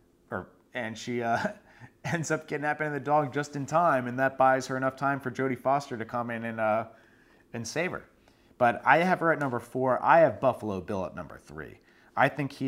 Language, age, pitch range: English, 30-49, 100-130 Hz